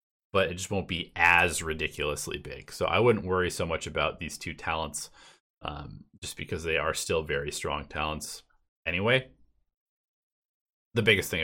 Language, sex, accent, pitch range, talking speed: English, male, American, 85-100 Hz, 165 wpm